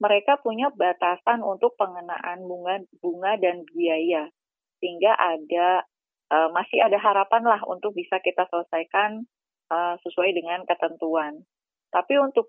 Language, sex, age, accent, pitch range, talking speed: Indonesian, female, 20-39, native, 175-210 Hz, 125 wpm